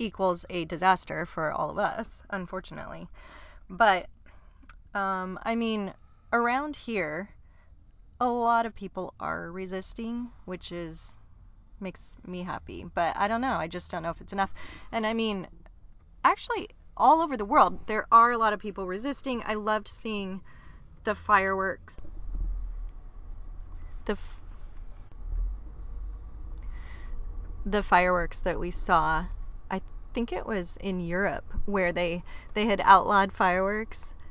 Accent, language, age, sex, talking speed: American, English, 30-49, female, 130 wpm